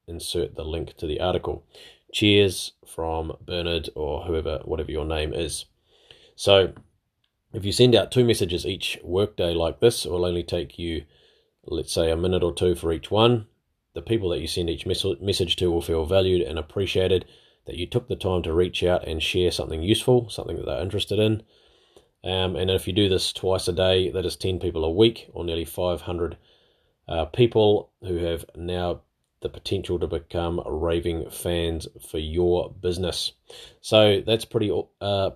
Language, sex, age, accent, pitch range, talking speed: English, male, 30-49, Australian, 85-105 Hz, 180 wpm